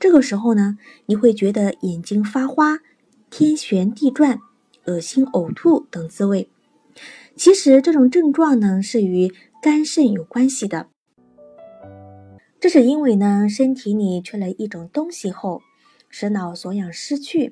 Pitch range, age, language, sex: 190-270 Hz, 20-39, Chinese, female